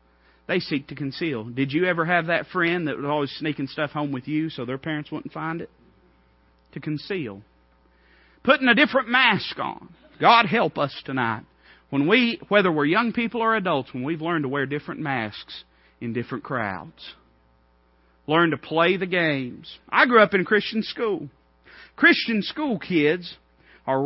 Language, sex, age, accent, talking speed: English, male, 40-59, American, 170 wpm